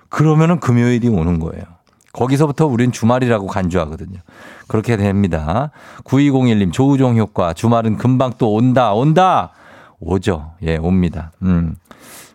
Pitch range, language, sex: 100-150 Hz, Korean, male